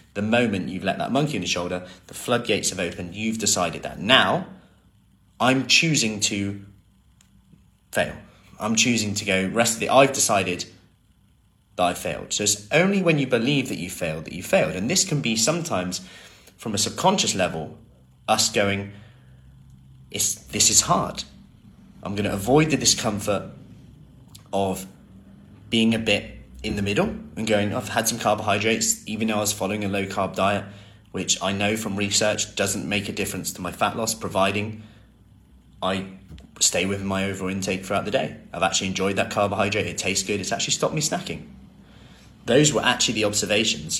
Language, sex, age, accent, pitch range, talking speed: English, male, 20-39, British, 95-110 Hz, 170 wpm